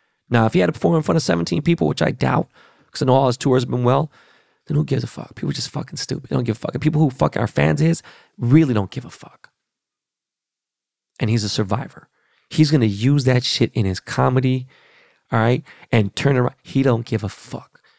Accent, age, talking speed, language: American, 30-49, 245 wpm, English